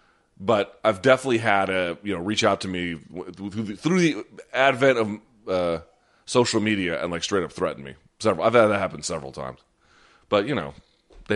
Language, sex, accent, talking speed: English, male, American, 185 wpm